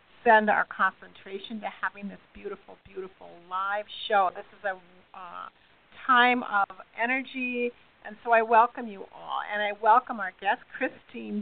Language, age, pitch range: English, 50-69, 205-250 Hz